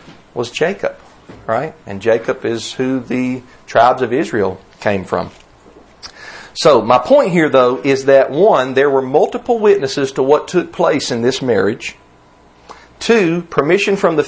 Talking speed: 150 wpm